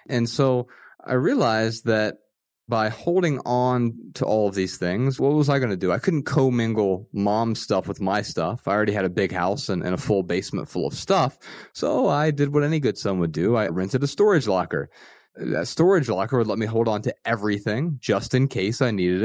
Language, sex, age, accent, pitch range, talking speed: English, male, 30-49, American, 100-130 Hz, 220 wpm